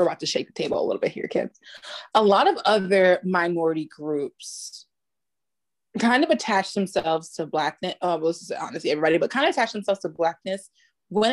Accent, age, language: American, 20-39, English